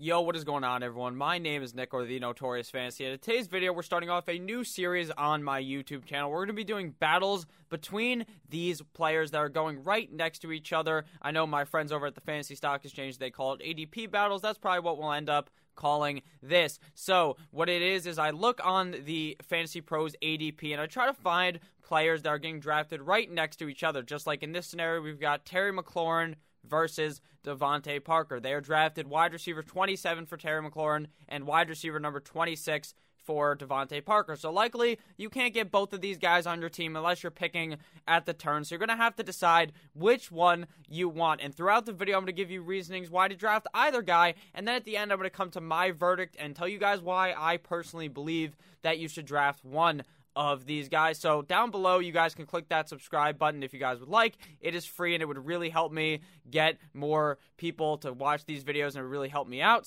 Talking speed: 230 wpm